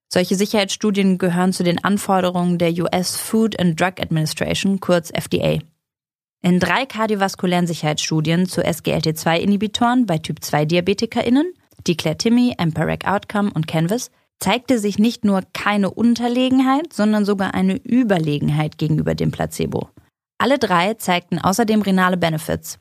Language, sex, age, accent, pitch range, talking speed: German, female, 20-39, German, 170-225 Hz, 125 wpm